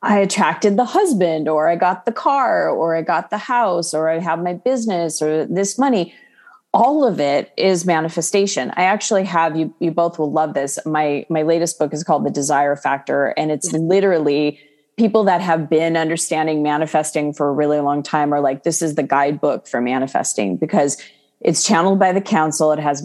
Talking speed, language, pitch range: 195 wpm, English, 150-195 Hz